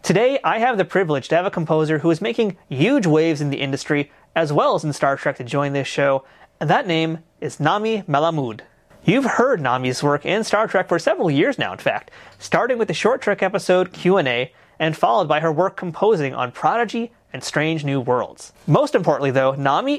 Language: English